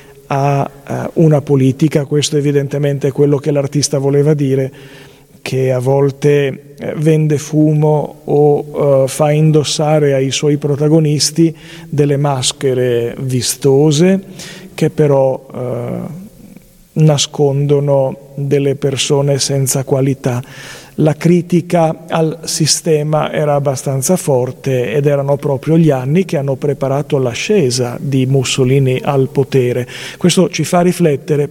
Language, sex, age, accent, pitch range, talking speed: Italian, male, 40-59, native, 135-155 Hz, 105 wpm